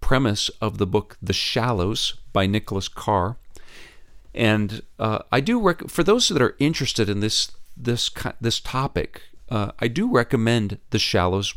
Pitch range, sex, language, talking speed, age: 95-120 Hz, male, English, 150 wpm, 40-59